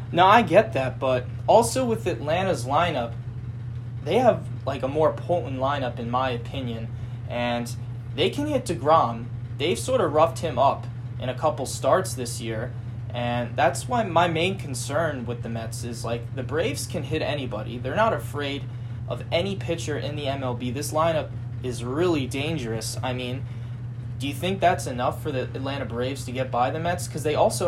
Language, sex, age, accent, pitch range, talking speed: English, male, 20-39, American, 120-130 Hz, 185 wpm